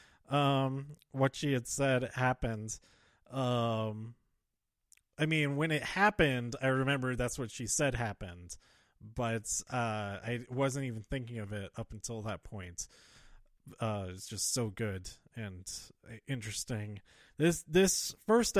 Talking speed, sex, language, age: 130 wpm, male, English, 30-49